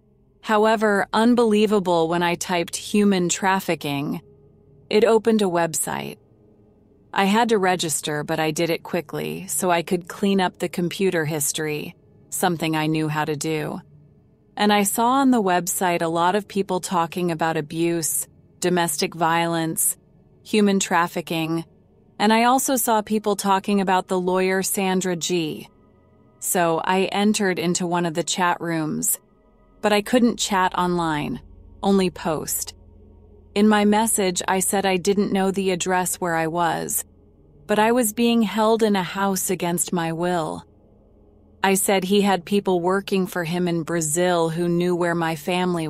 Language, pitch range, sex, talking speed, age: English, 160-195 Hz, female, 155 wpm, 30-49